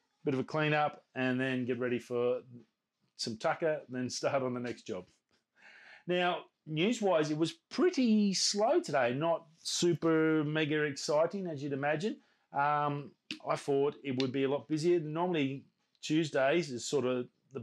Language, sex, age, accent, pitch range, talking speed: English, male, 30-49, Australian, 125-155 Hz, 165 wpm